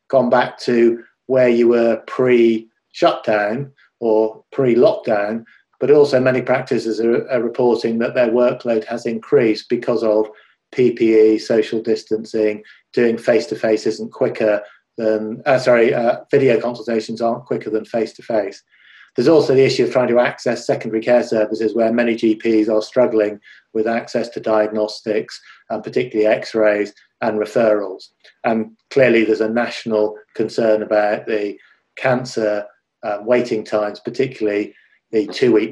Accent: British